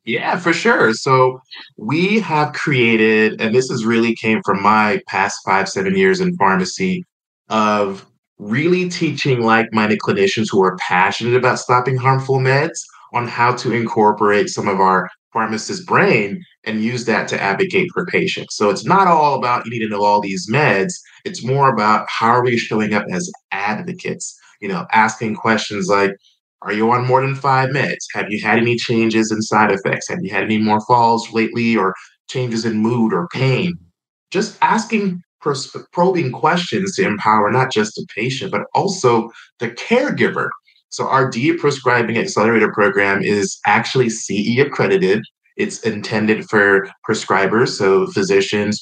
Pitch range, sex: 105-135 Hz, male